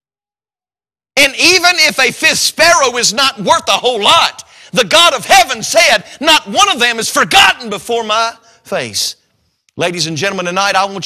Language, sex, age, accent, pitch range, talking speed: English, male, 40-59, American, 205-280 Hz, 175 wpm